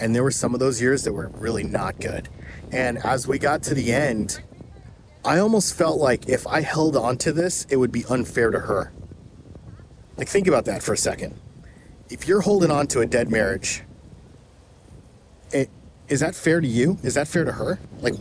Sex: male